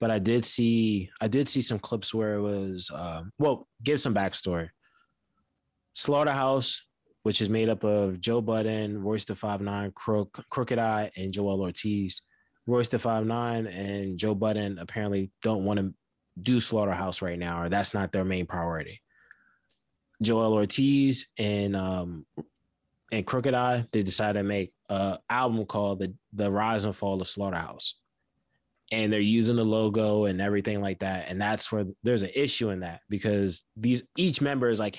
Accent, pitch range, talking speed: American, 100-120 Hz, 165 wpm